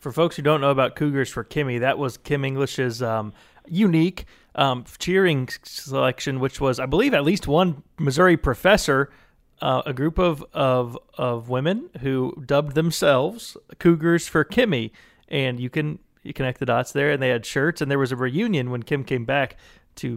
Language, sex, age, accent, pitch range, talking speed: English, male, 30-49, American, 125-155 Hz, 185 wpm